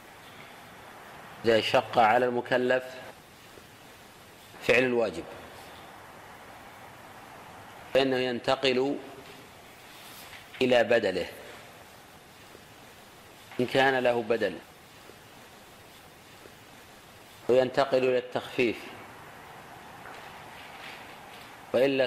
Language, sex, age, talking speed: Arabic, male, 50-69, 50 wpm